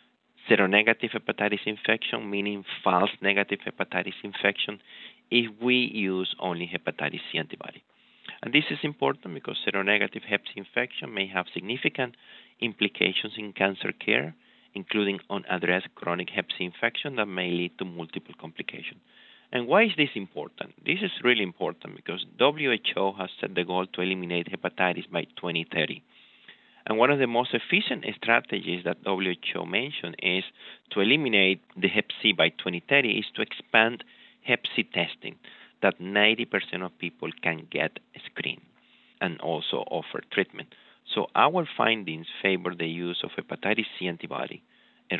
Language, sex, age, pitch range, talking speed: English, male, 30-49, 90-110 Hz, 145 wpm